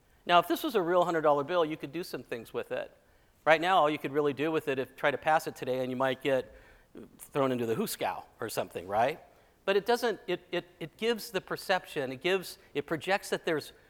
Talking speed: 240 wpm